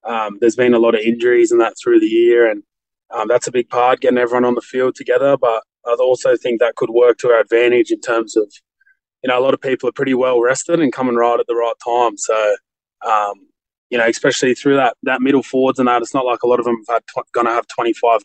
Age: 20-39